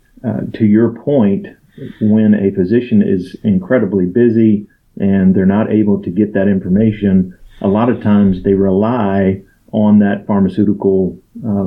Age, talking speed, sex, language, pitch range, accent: 40-59, 145 wpm, male, English, 100-115 Hz, American